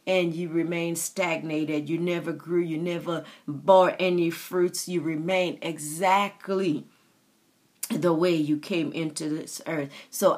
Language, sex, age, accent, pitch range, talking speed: English, female, 40-59, American, 185-255 Hz, 135 wpm